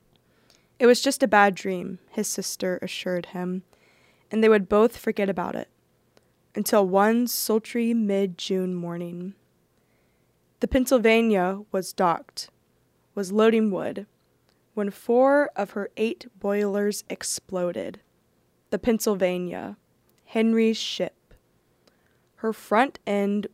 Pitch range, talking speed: 185-220 Hz, 110 wpm